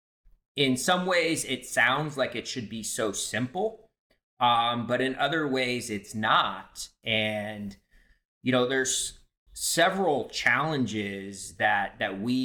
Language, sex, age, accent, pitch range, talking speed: English, male, 30-49, American, 100-125 Hz, 130 wpm